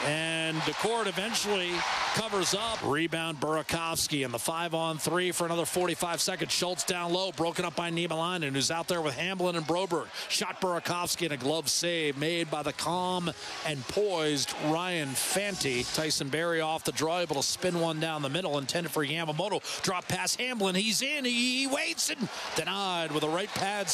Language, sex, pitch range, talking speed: English, male, 165-225 Hz, 175 wpm